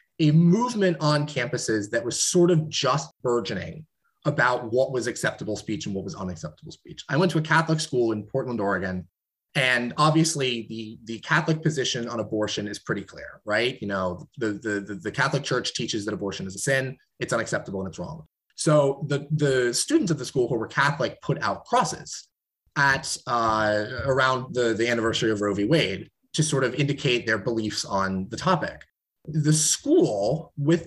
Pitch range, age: 115-160 Hz, 30-49